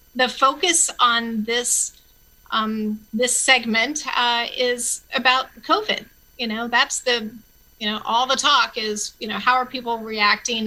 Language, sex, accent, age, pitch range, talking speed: English, female, American, 40-59, 215-250 Hz, 150 wpm